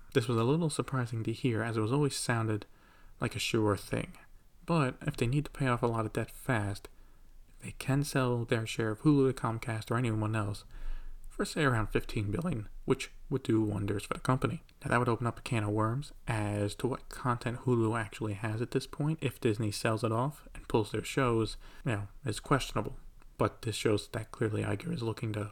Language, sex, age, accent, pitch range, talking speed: English, male, 30-49, American, 105-130 Hz, 220 wpm